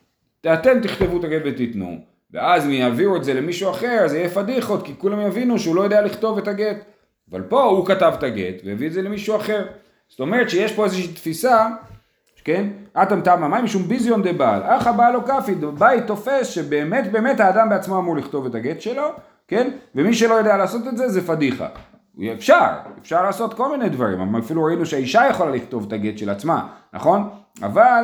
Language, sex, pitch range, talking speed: Hebrew, male, 155-225 Hz, 170 wpm